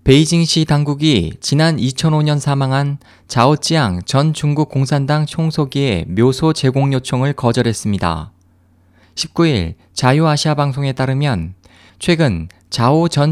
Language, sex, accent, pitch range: Korean, male, native, 105-155 Hz